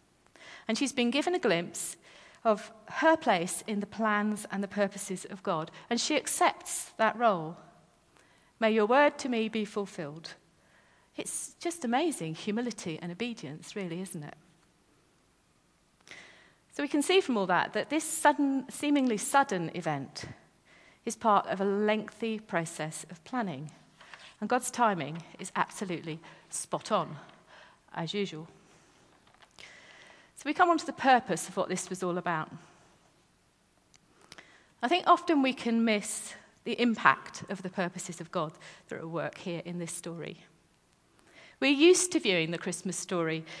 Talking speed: 145 wpm